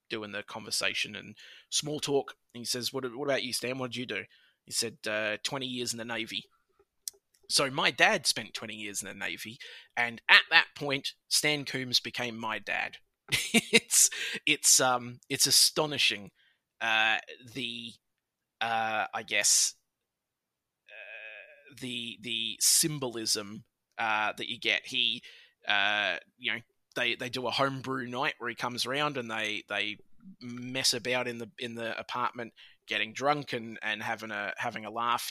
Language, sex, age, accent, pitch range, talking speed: English, male, 20-39, Australian, 115-135 Hz, 165 wpm